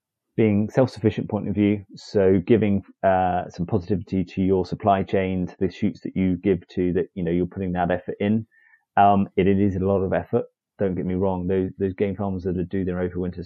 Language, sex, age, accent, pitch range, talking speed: English, male, 30-49, British, 90-110 Hz, 225 wpm